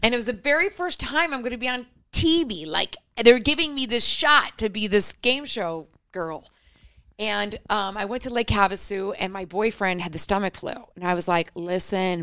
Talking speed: 210 wpm